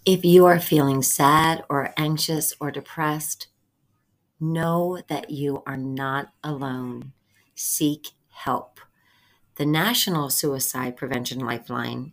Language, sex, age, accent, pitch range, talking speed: English, female, 40-59, American, 135-170 Hz, 110 wpm